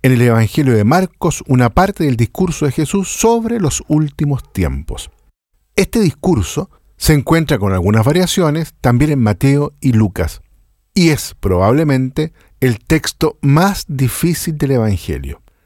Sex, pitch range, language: male, 115-160 Hz, Spanish